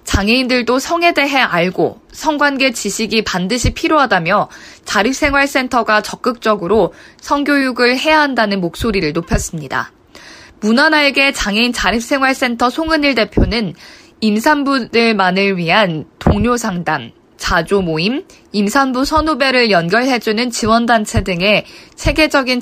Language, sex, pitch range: Korean, female, 195-270 Hz